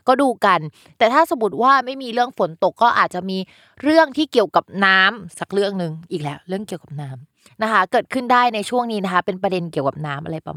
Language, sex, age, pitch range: Thai, female, 20-39, 170-230 Hz